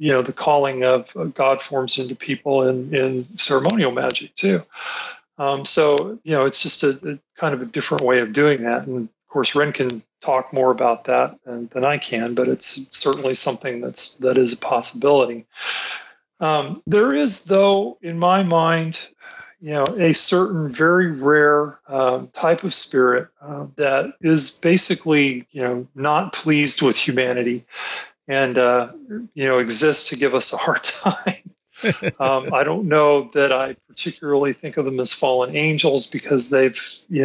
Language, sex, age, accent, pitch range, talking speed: English, male, 40-59, American, 125-155 Hz, 170 wpm